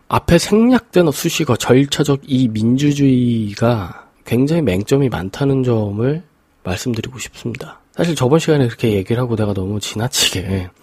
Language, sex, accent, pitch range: Korean, male, native, 110-140 Hz